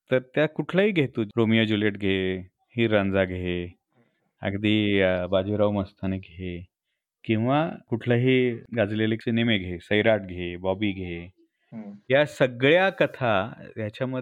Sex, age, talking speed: male, 30-49, 100 wpm